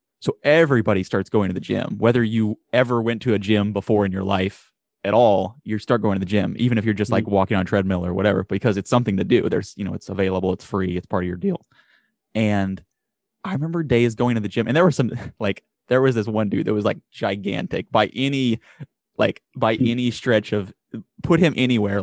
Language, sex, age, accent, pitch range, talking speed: English, male, 20-39, American, 100-120 Hz, 235 wpm